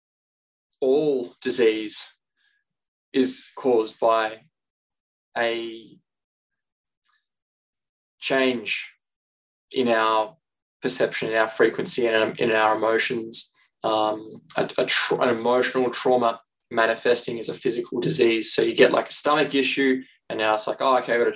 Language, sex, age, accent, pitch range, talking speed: English, male, 20-39, Australian, 115-140 Hz, 125 wpm